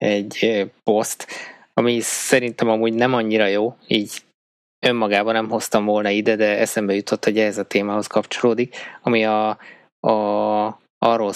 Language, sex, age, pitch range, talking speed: Hungarian, male, 20-39, 105-115 Hz, 135 wpm